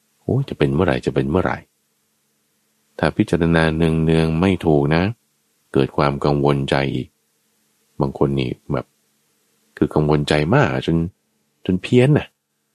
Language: Thai